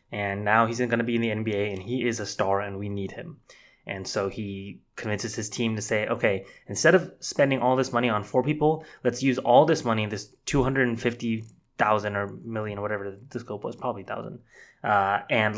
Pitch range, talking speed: 105-125 Hz, 205 wpm